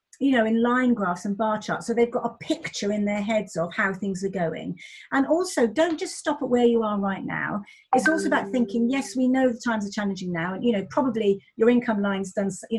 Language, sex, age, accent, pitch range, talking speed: English, female, 40-59, British, 200-255 Hz, 250 wpm